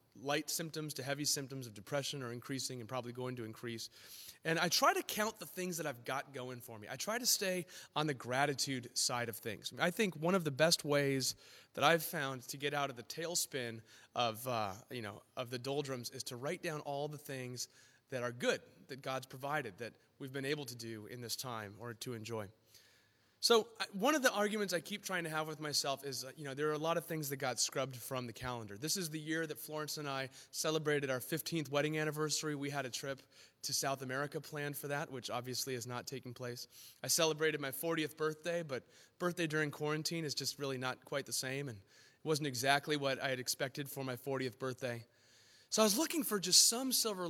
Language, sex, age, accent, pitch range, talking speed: English, male, 30-49, American, 125-155 Hz, 225 wpm